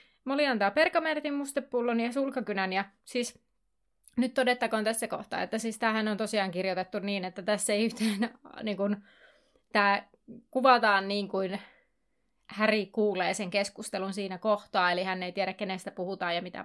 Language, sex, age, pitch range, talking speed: Finnish, female, 30-49, 200-255 Hz, 150 wpm